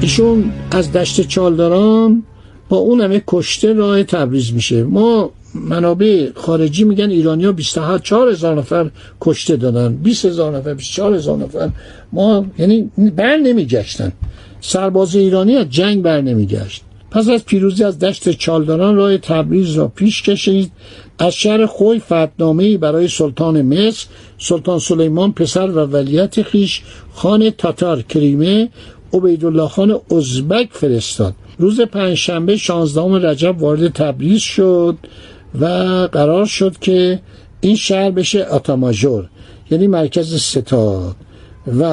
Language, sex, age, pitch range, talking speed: Persian, male, 60-79, 150-205 Hz, 115 wpm